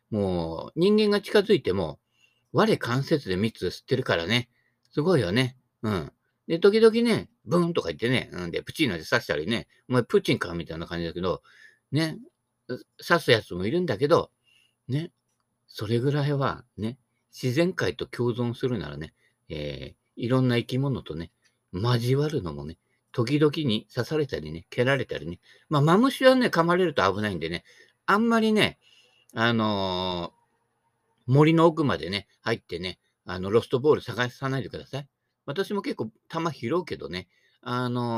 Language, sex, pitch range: Japanese, male, 115-170 Hz